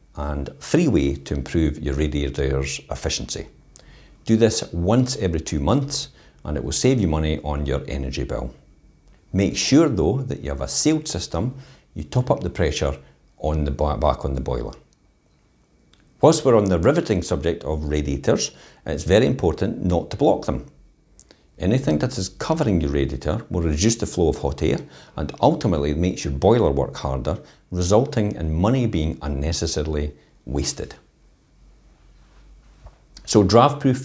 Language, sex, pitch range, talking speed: English, male, 70-105 Hz, 155 wpm